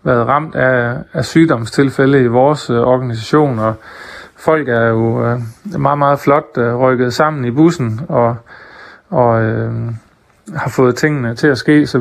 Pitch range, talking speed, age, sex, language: 120-145 Hz, 140 wpm, 30-49, male, Danish